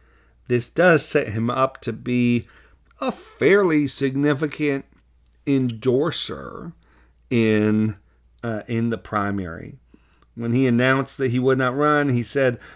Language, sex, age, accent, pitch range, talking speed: English, male, 40-59, American, 100-130 Hz, 120 wpm